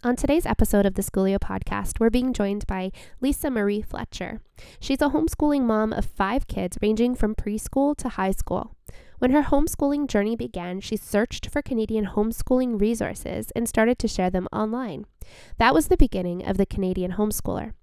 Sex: female